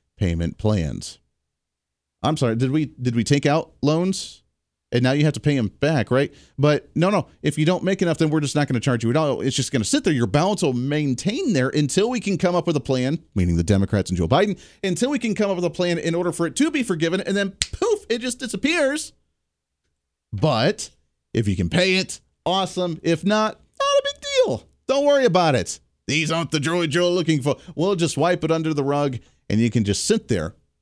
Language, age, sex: English, 40-59, male